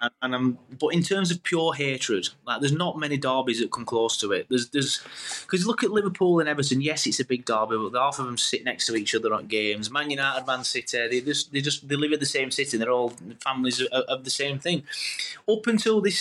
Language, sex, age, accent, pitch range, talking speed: English, male, 20-39, British, 120-155 Hz, 245 wpm